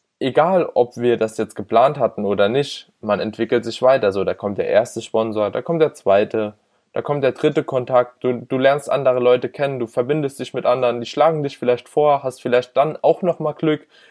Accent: German